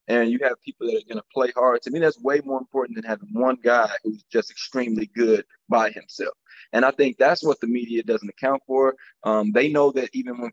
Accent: American